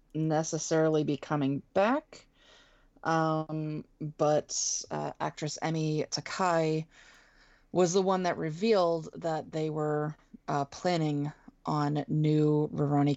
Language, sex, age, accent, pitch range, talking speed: English, female, 20-39, American, 145-175 Hz, 105 wpm